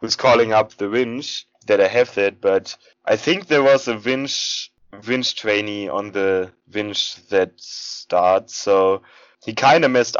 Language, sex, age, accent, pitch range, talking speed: English, male, 20-39, German, 105-140 Hz, 165 wpm